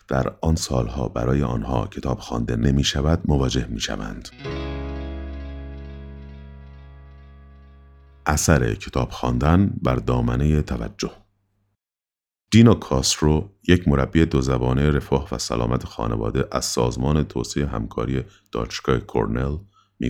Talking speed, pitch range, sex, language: 100 wpm, 65-90 Hz, male, Persian